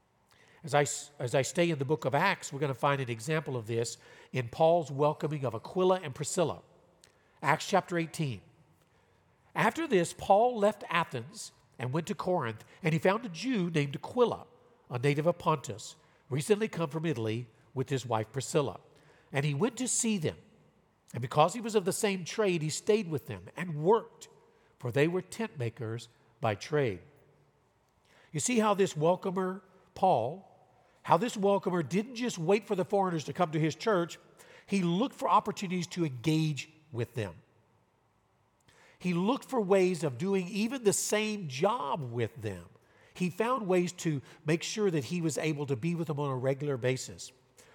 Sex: male